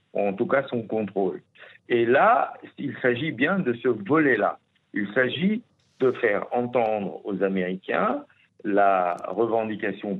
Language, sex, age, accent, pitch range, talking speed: French, male, 60-79, French, 100-130 Hz, 130 wpm